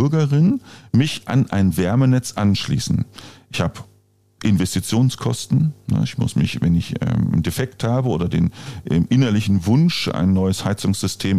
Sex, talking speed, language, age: male, 125 wpm, German, 50-69